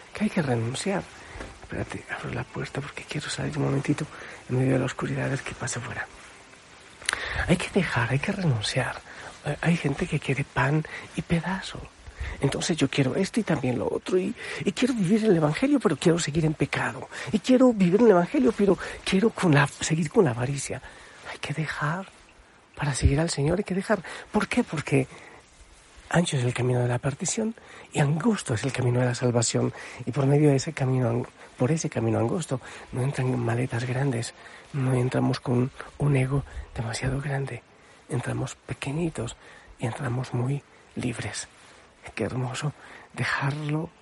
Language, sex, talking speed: Spanish, male, 170 wpm